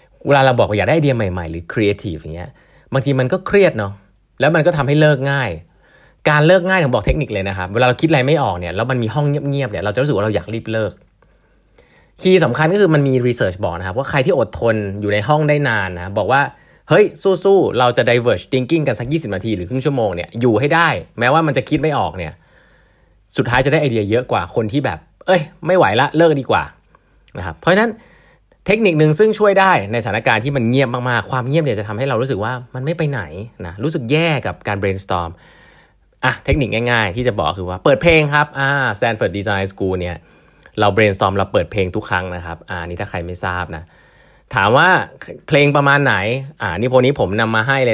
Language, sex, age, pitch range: Thai, male, 20-39, 100-145 Hz